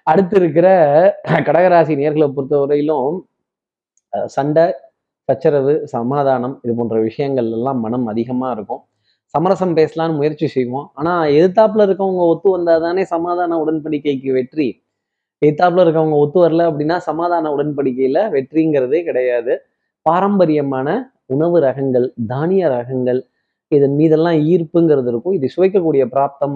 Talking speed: 110 wpm